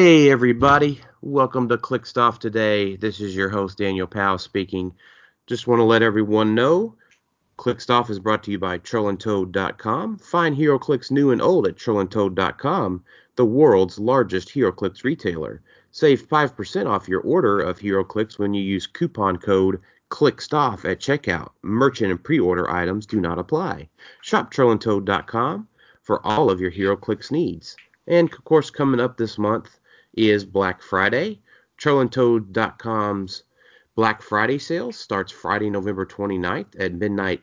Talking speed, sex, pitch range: 145 wpm, male, 100-130 Hz